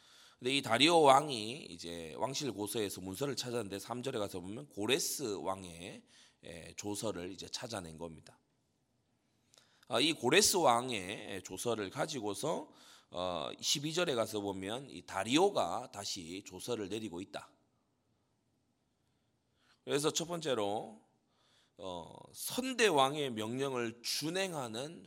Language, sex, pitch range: Korean, male, 105-145 Hz